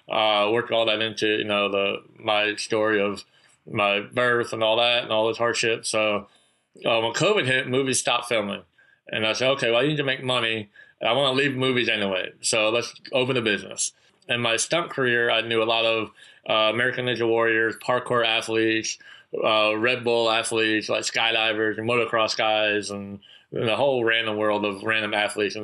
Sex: male